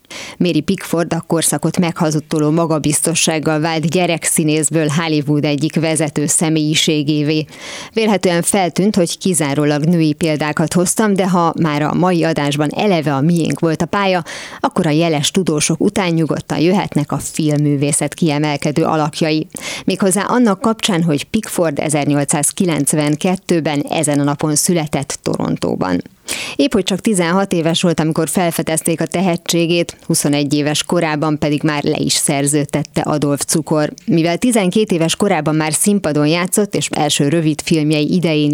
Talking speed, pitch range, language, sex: 130 wpm, 150-180 Hz, Hungarian, female